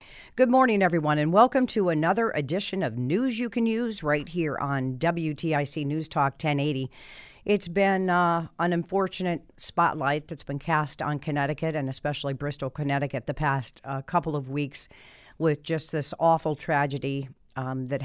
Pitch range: 140-165 Hz